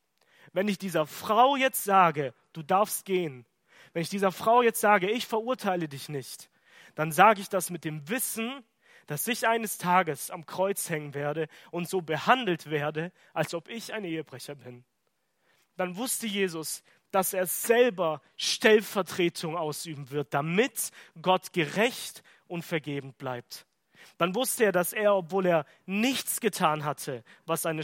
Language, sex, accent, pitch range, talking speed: German, male, German, 150-195 Hz, 155 wpm